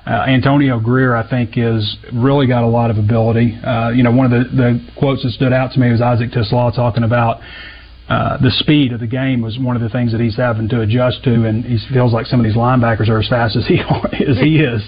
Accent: American